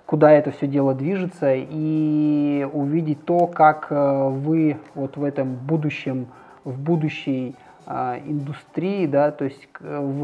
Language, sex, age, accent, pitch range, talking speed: Russian, male, 20-39, native, 135-160 Hz, 125 wpm